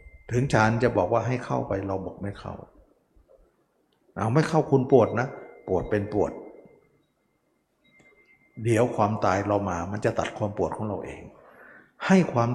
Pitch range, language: 100-125 Hz, Thai